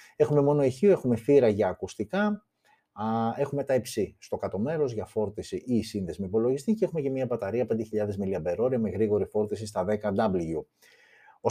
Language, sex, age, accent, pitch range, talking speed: Greek, male, 30-49, native, 95-145 Hz, 155 wpm